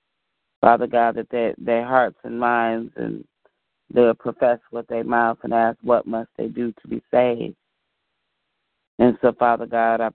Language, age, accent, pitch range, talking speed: English, 30-49, American, 115-125 Hz, 160 wpm